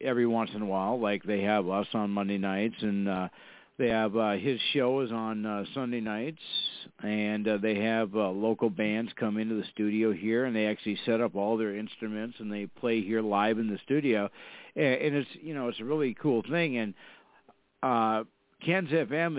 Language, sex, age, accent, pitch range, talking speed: English, male, 50-69, American, 110-140 Hz, 200 wpm